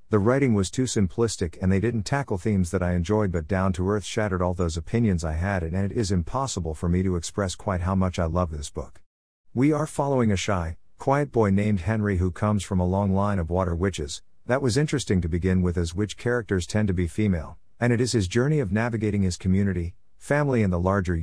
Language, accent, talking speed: English, American, 230 wpm